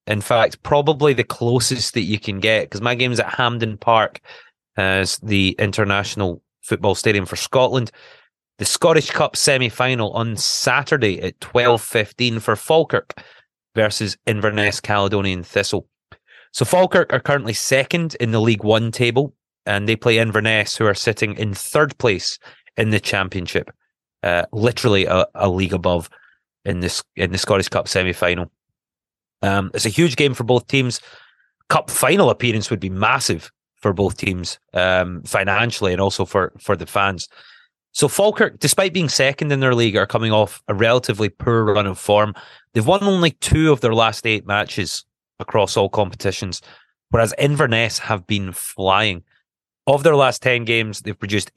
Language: English